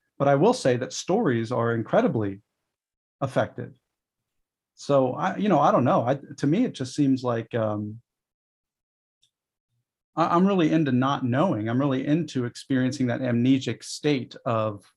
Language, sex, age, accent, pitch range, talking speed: English, male, 40-59, American, 120-150 Hz, 150 wpm